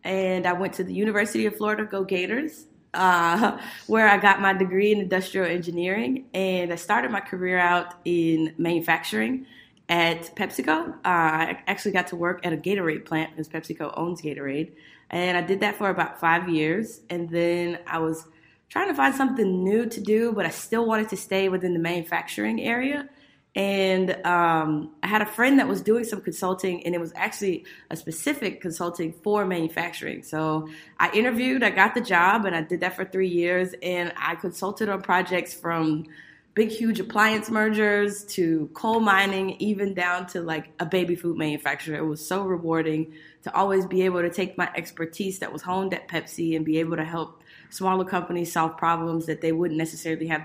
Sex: female